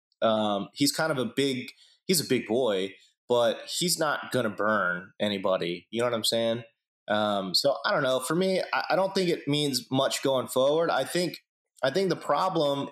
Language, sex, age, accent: English, male, 30-49, American